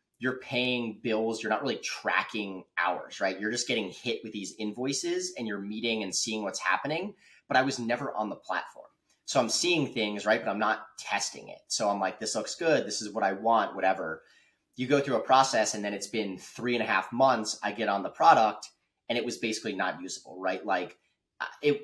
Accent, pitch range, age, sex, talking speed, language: American, 95-125 Hz, 30-49, male, 220 wpm, English